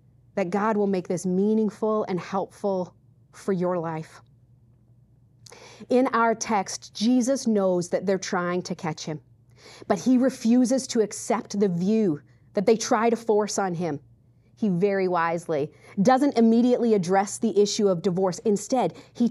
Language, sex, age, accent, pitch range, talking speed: English, female, 40-59, American, 140-220 Hz, 150 wpm